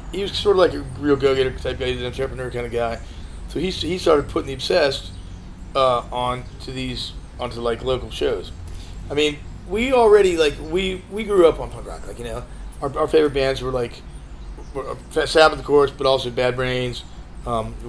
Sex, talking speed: male, 200 wpm